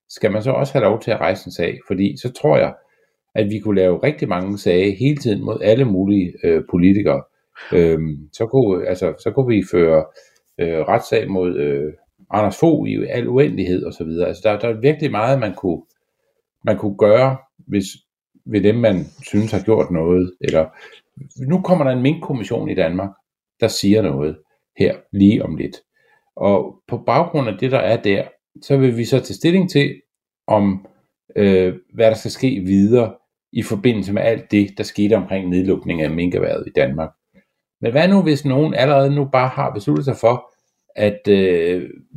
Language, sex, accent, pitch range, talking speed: Danish, male, native, 95-135 Hz, 185 wpm